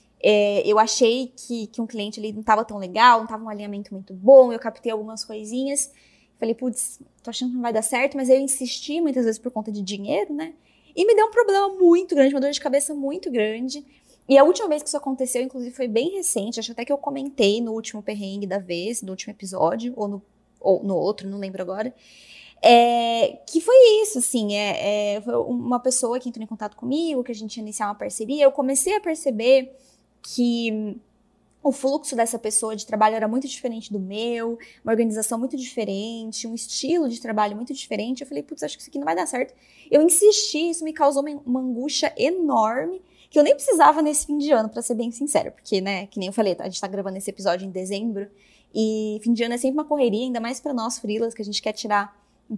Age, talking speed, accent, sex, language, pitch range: 20-39, 225 wpm, Brazilian, female, Portuguese, 215-275 Hz